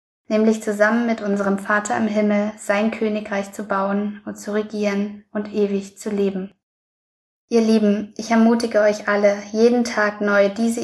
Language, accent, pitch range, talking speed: German, German, 200-220 Hz, 155 wpm